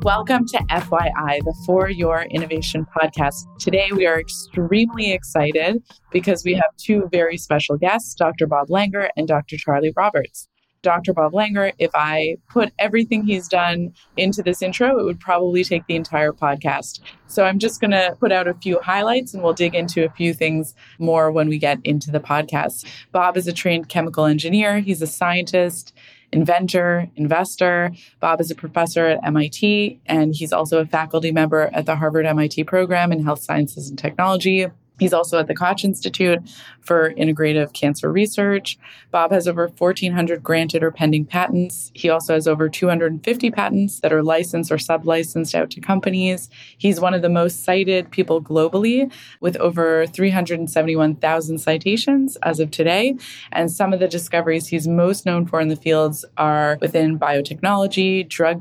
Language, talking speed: English, 170 wpm